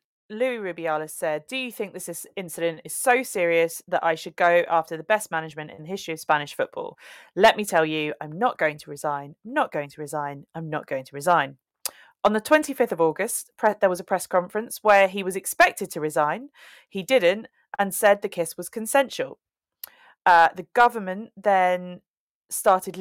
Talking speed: 190 wpm